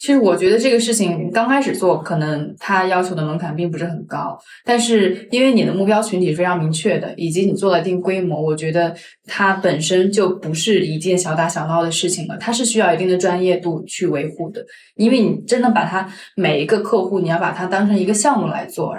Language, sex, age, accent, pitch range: Chinese, female, 20-39, native, 175-215 Hz